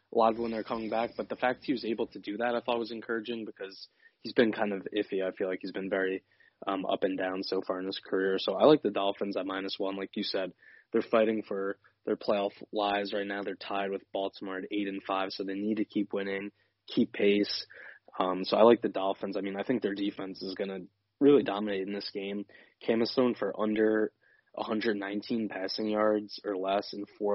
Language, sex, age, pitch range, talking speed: English, male, 20-39, 95-110 Hz, 230 wpm